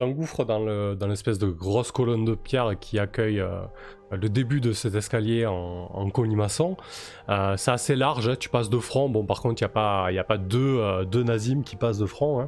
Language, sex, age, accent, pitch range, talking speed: French, male, 20-39, French, 100-125 Hz, 240 wpm